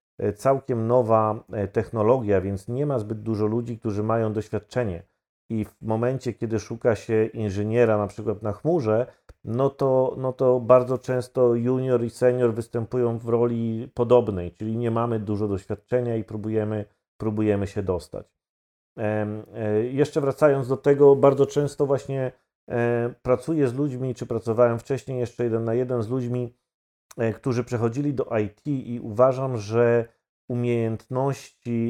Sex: male